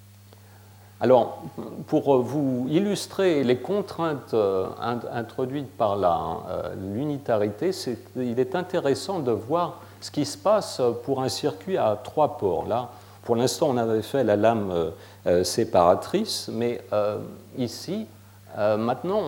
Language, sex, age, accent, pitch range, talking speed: French, male, 50-69, French, 100-135 Hz, 120 wpm